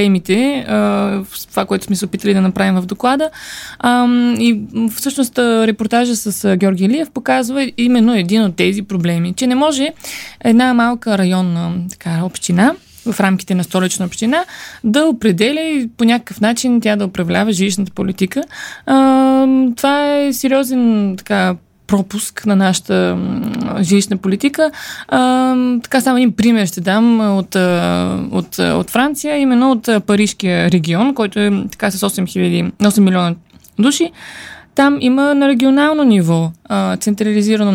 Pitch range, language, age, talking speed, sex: 195-255 Hz, Bulgarian, 20-39, 130 wpm, female